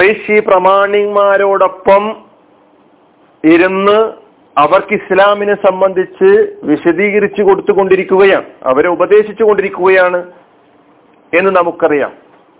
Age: 40-59